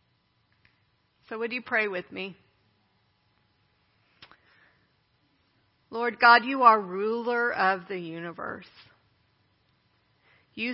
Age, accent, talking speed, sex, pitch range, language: 40-59, American, 85 wpm, female, 175-215 Hz, English